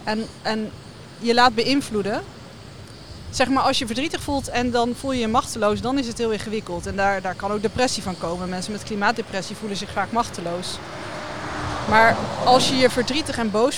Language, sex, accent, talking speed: Dutch, female, Dutch, 185 wpm